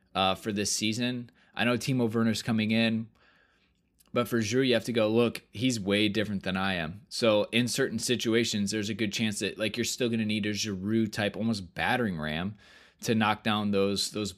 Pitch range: 100-115 Hz